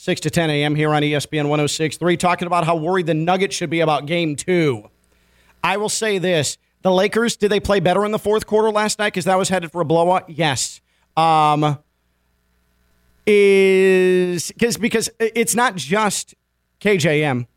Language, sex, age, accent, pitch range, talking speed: English, male, 40-59, American, 155-220 Hz, 170 wpm